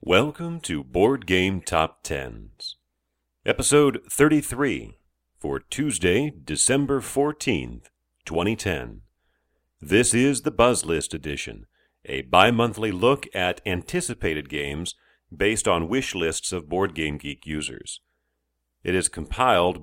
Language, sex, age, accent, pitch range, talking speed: English, male, 50-69, American, 70-115 Hz, 110 wpm